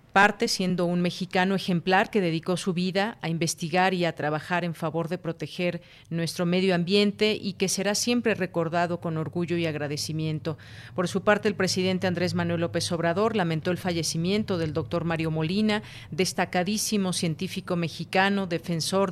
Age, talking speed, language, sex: 40-59, 155 wpm, Spanish, female